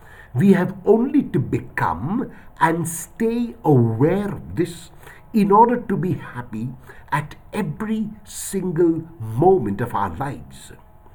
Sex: male